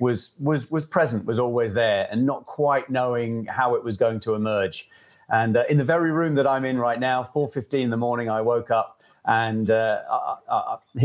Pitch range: 110-135 Hz